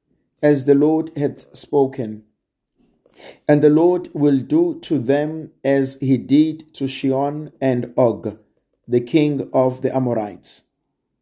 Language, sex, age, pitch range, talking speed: English, male, 50-69, 125-155 Hz, 130 wpm